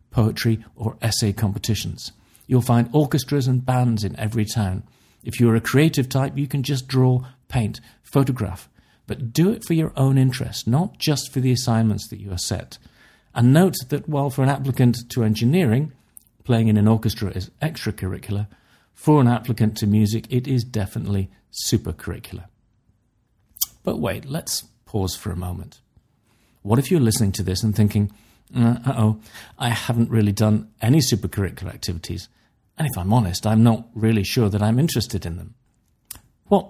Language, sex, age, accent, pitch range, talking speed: English, male, 50-69, British, 105-130 Hz, 165 wpm